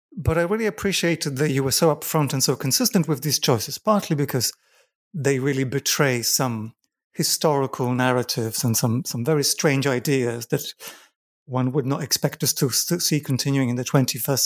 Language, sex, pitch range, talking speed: English, male, 125-155 Hz, 170 wpm